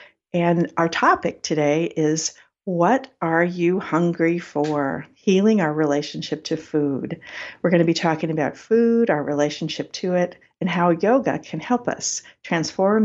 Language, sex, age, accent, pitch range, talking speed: English, female, 60-79, American, 145-185 Hz, 150 wpm